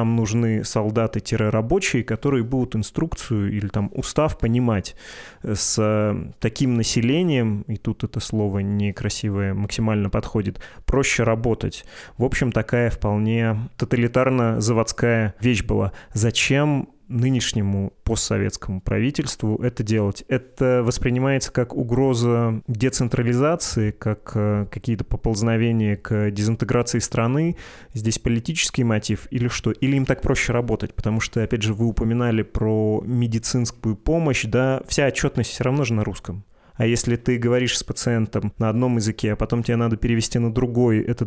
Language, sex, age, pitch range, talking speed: Russian, male, 20-39, 110-125 Hz, 130 wpm